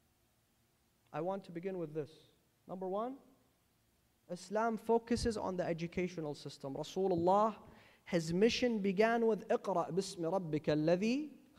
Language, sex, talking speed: English, male, 110 wpm